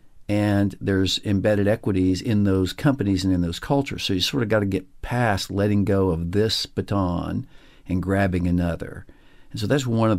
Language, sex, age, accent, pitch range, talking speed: English, male, 60-79, American, 90-110 Hz, 190 wpm